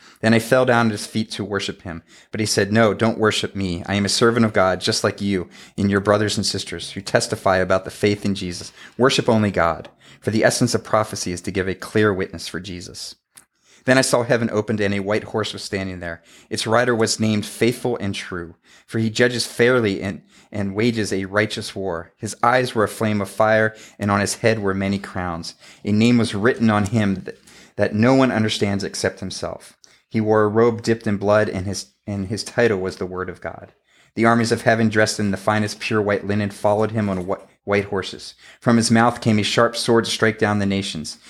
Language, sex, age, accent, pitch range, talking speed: English, male, 30-49, American, 95-115 Hz, 225 wpm